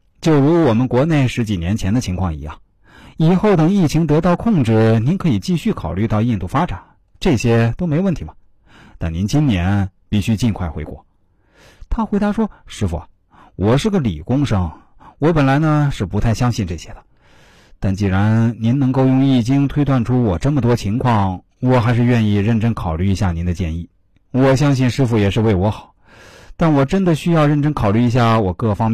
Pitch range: 95-135 Hz